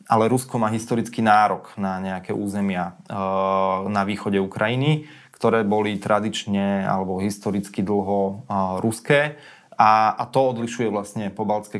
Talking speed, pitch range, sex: 115 wpm, 105-125 Hz, male